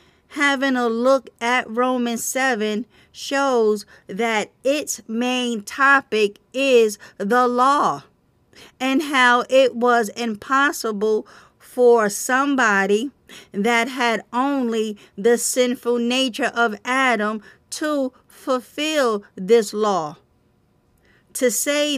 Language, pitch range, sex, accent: English, 215-255 Hz, female, American